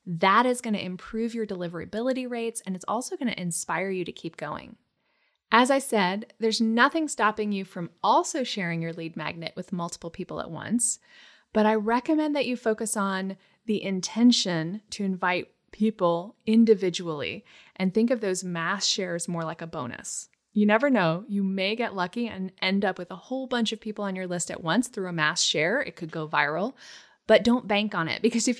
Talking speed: 195 wpm